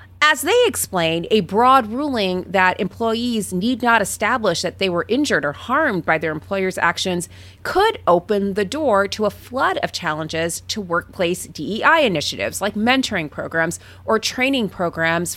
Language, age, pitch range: English, 30-49, 165-215 Hz